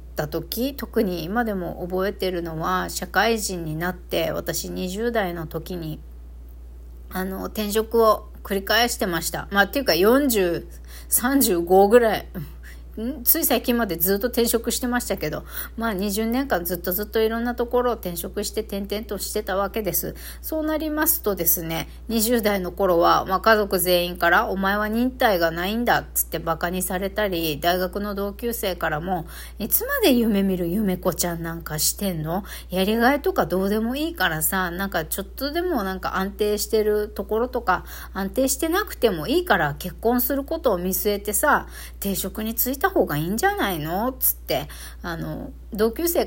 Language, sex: Japanese, female